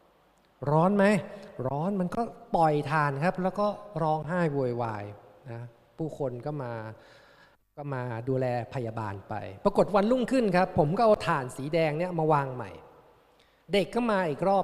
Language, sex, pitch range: Thai, male, 135-195 Hz